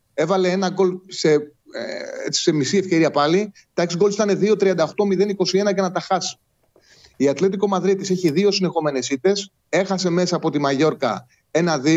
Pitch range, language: 145-185 Hz, Greek